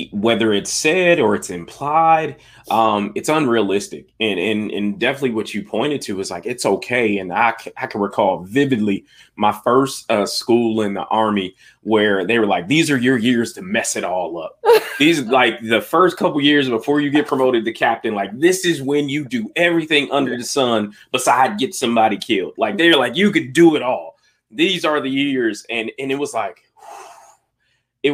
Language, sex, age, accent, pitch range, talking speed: English, male, 20-39, American, 110-145 Hz, 195 wpm